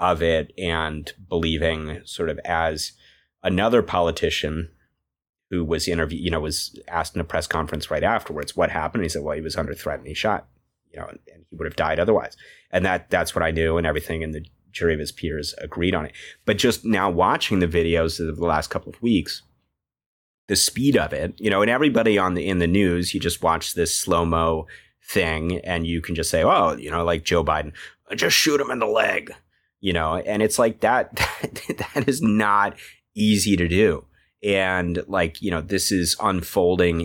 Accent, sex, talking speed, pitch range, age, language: American, male, 210 wpm, 80-90 Hz, 30-49, English